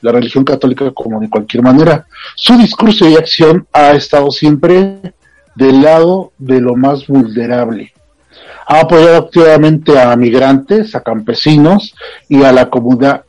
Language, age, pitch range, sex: Spanish, 40-59, 130-160 Hz, male